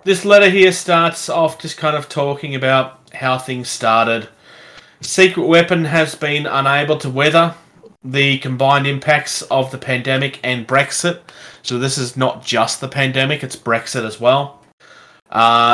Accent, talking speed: Australian, 155 wpm